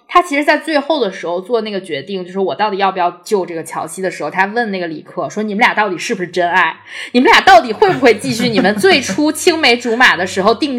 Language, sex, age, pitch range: Chinese, female, 20-39, 190-270 Hz